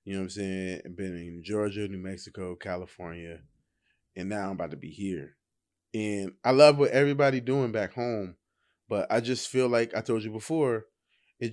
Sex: male